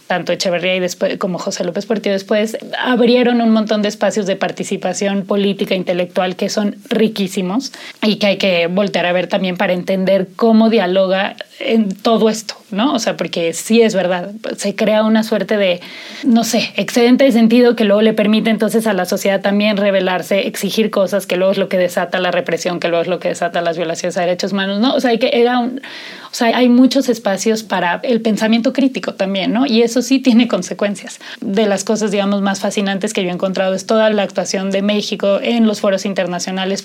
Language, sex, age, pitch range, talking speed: Spanish, female, 30-49, 190-230 Hz, 205 wpm